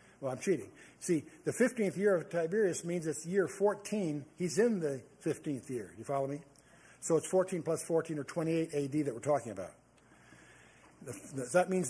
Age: 60-79